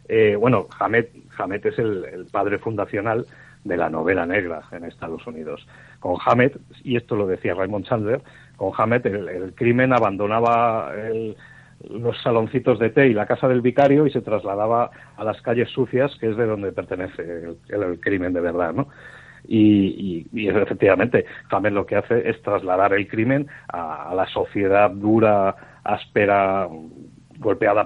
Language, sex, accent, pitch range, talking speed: Spanish, male, Spanish, 105-130 Hz, 165 wpm